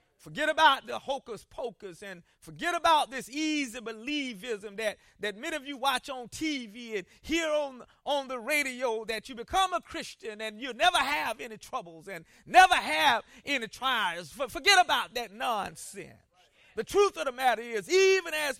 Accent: American